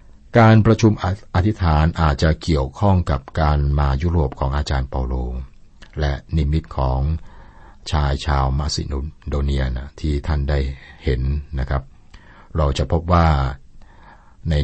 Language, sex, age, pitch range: Thai, male, 60-79, 70-85 Hz